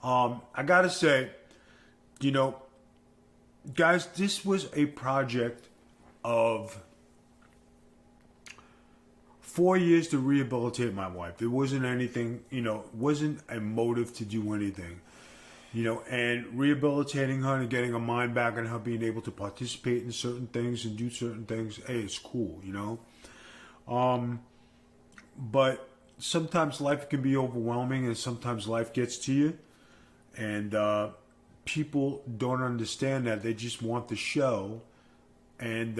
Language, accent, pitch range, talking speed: English, American, 115-135 Hz, 135 wpm